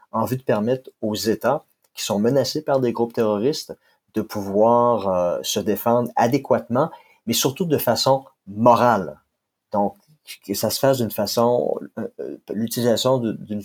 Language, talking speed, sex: French, 145 wpm, male